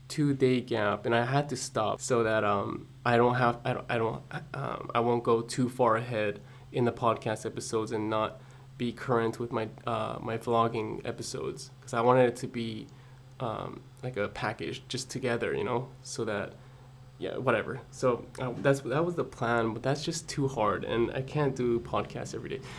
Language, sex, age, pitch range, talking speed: English, male, 20-39, 115-130 Hz, 200 wpm